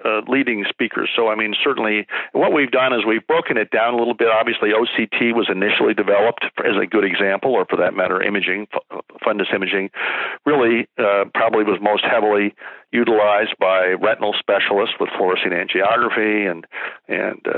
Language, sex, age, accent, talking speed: English, male, 50-69, American, 165 wpm